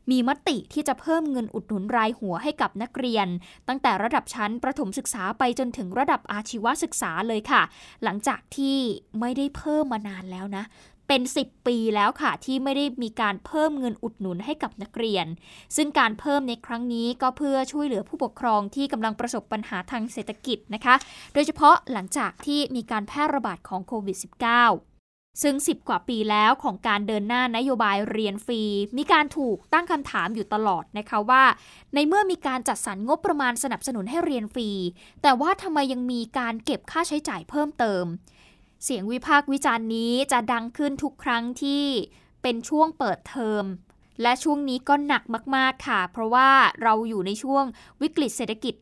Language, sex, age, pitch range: Thai, female, 20-39, 220-285 Hz